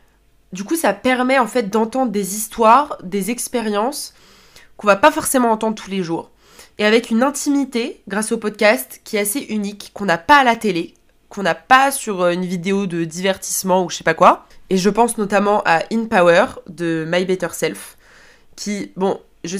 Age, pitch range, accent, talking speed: 20-39, 180-230 Hz, French, 195 wpm